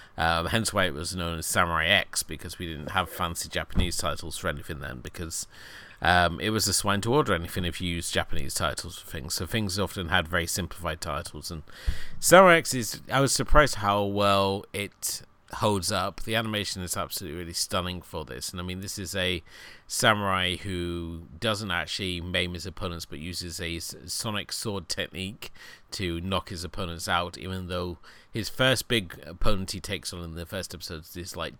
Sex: male